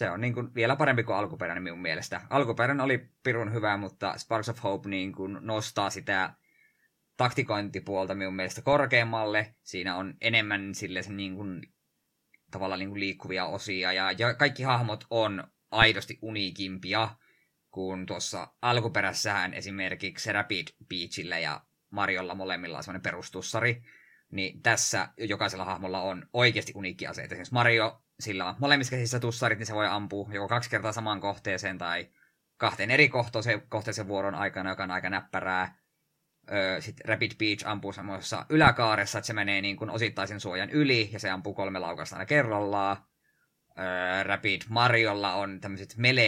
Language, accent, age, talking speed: Finnish, native, 20-39, 145 wpm